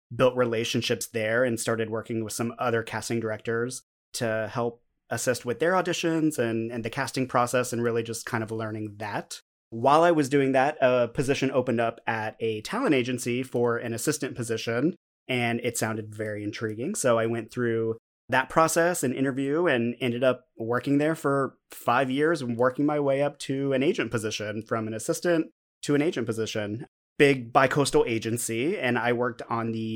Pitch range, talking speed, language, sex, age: 115-135 Hz, 180 wpm, English, male, 30-49